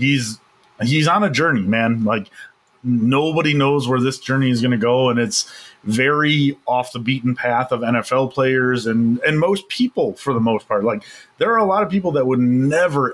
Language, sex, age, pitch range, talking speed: English, male, 30-49, 125-170 Hz, 200 wpm